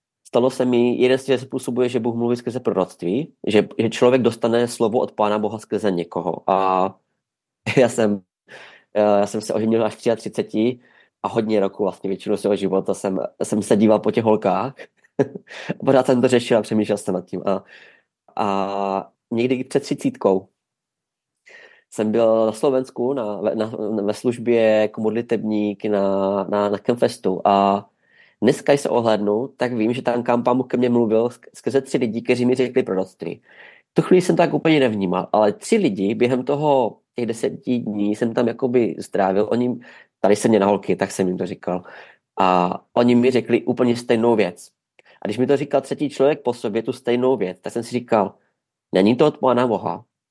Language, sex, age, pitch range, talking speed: Czech, male, 20-39, 105-125 Hz, 180 wpm